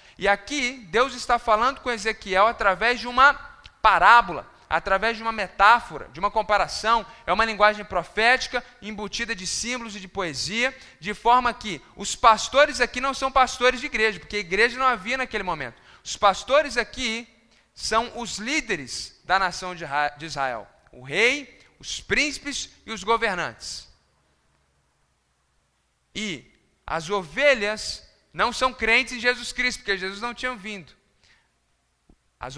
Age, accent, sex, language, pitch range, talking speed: 10-29, Brazilian, male, Portuguese, 185-245 Hz, 140 wpm